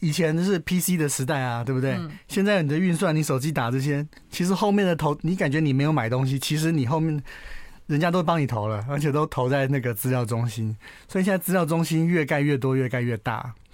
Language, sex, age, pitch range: Chinese, male, 30-49, 125-165 Hz